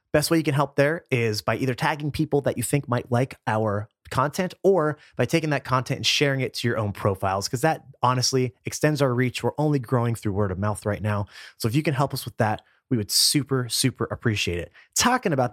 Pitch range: 120-155 Hz